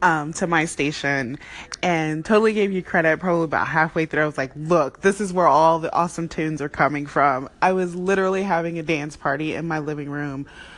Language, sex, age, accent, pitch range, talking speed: English, female, 20-39, American, 160-210 Hz, 210 wpm